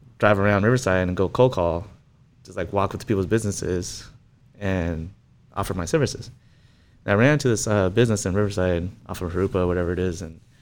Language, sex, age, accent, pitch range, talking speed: English, male, 20-39, American, 90-120 Hz, 190 wpm